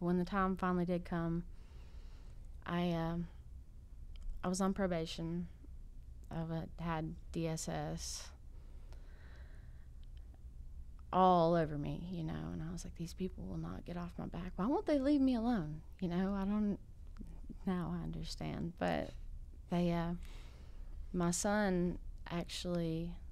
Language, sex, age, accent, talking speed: English, female, 20-39, American, 130 wpm